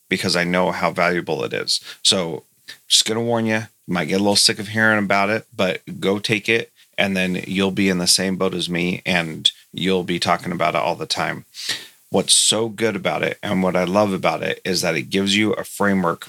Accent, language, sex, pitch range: American, English, male, 95-105 Hz